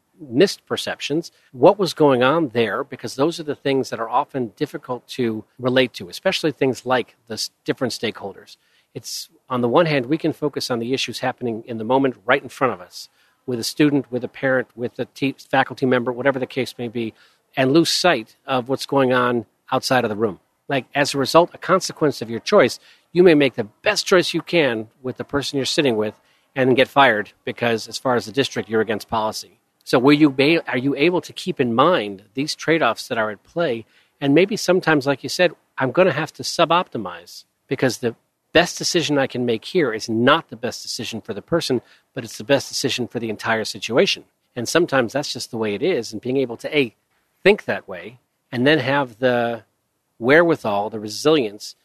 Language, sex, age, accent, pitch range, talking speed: English, male, 40-59, American, 115-145 Hz, 210 wpm